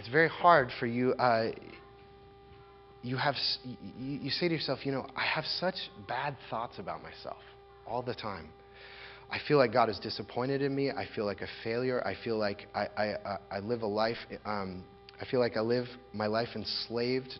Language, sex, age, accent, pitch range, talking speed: English, male, 30-49, American, 105-130 Hz, 190 wpm